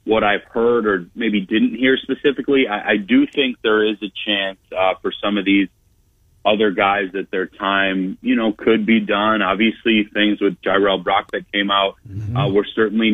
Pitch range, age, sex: 100-130 Hz, 30-49, male